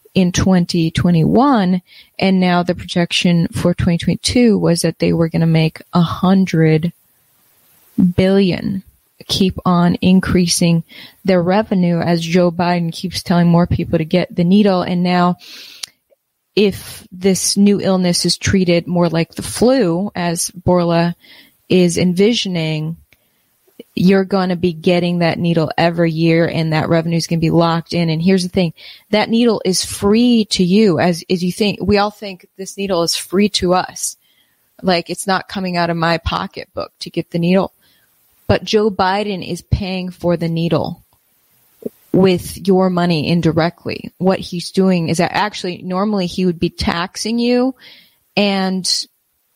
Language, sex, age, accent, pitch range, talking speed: English, female, 20-39, American, 170-195 Hz, 155 wpm